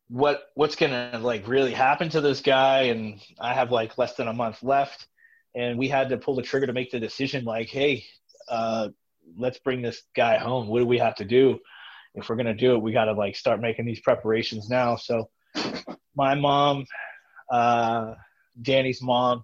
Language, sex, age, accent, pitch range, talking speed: English, male, 20-39, American, 115-140 Hz, 190 wpm